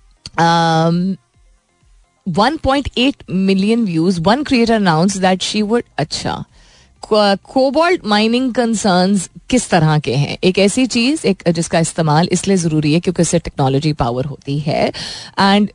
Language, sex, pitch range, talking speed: Hindi, female, 160-215 Hz, 135 wpm